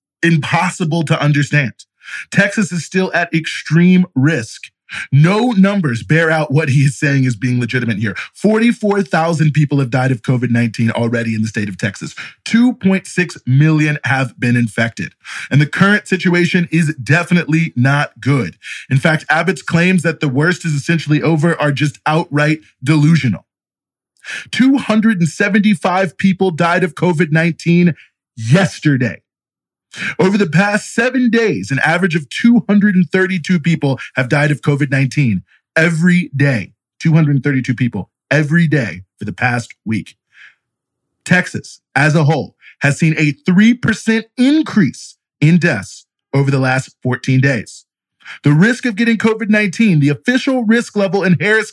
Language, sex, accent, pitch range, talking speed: English, male, American, 140-185 Hz, 135 wpm